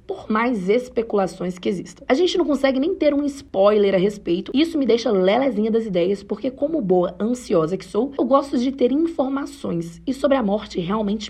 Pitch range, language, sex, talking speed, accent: 190-260 Hz, Portuguese, female, 200 wpm, Brazilian